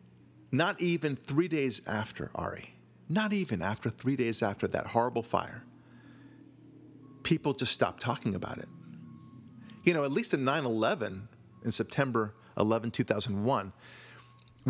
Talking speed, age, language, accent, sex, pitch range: 125 wpm, 40-59, English, American, male, 110-135 Hz